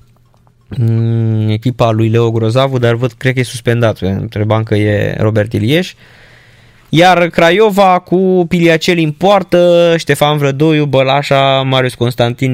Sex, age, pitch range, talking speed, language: male, 20-39, 115-140 Hz, 125 wpm, Romanian